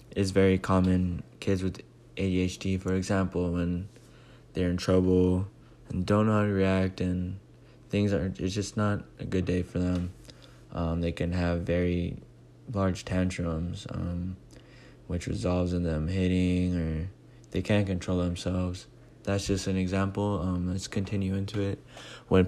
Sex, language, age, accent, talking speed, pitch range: male, English, 20-39, American, 150 wpm, 90-100 Hz